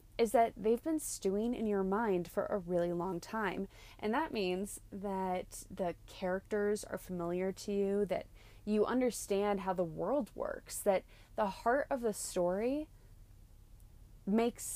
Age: 20-39